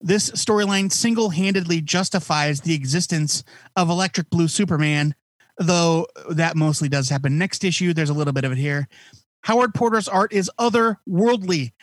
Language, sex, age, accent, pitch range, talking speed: English, male, 30-49, American, 150-195 Hz, 145 wpm